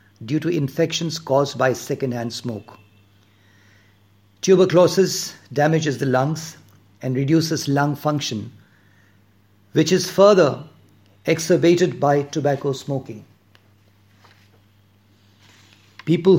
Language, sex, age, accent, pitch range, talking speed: English, male, 50-69, Indian, 100-160 Hz, 85 wpm